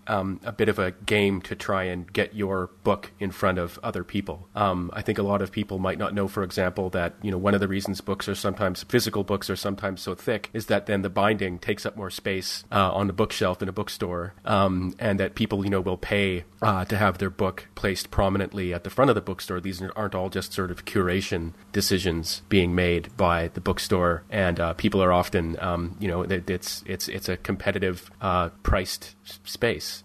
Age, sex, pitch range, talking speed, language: 30-49, male, 95-105 Hz, 220 wpm, English